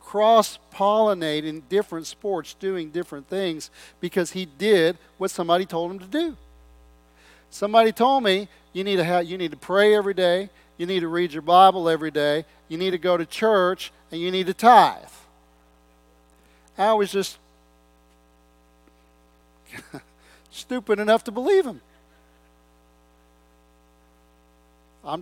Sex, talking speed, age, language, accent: male, 135 wpm, 40-59, English, American